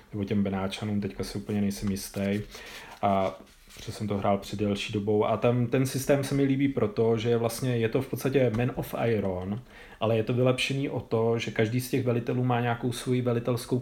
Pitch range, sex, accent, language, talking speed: 110-130 Hz, male, native, Czech, 210 wpm